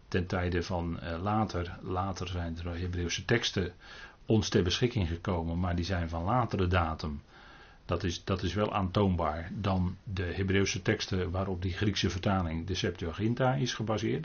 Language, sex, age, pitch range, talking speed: Dutch, male, 40-59, 90-110 Hz, 150 wpm